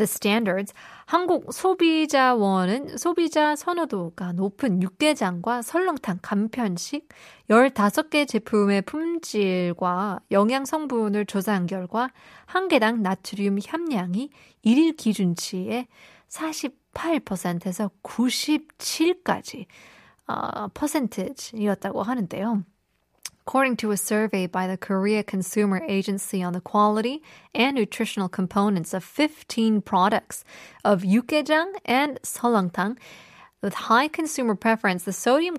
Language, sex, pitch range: Korean, female, 195-255 Hz